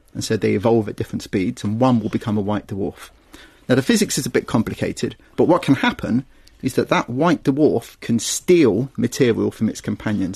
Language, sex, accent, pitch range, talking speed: English, male, British, 105-130 Hz, 210 wpm